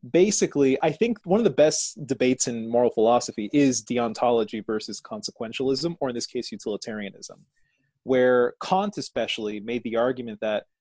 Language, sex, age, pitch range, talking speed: English, male, 30-49, 115-145 Hz, 150 wpm